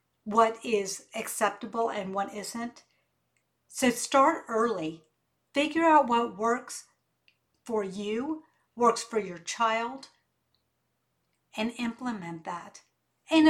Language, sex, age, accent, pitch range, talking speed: English, female, 50-69, American, 205-250 Hz, 100 wpm